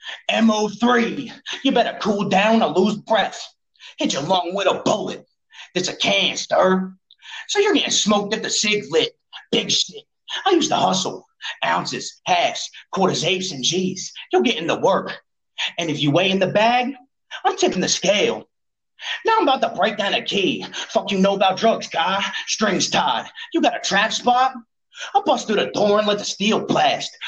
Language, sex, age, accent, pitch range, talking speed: English, male, 30-49, American, 190-305 Hz, 185 wpm